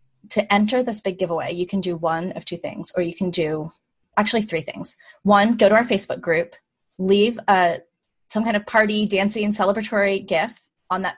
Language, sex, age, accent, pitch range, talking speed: English, female, 20-39, American, 175-205 Hz, 195 wpm